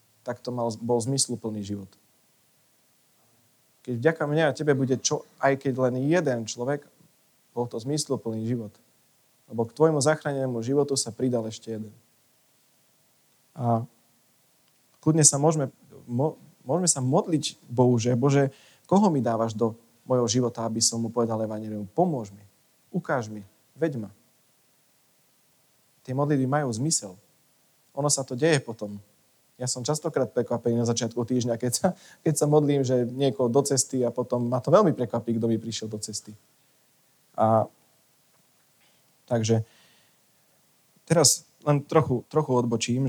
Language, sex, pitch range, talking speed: Slovak, male, 115-140 Hz, 140 wpm